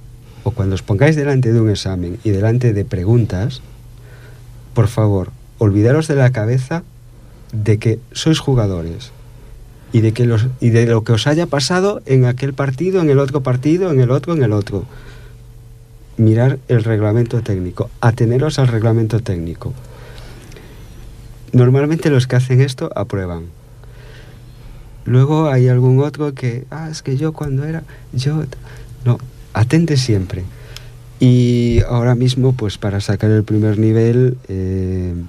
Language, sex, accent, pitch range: Italian, male, Spanish, 100-125 Hz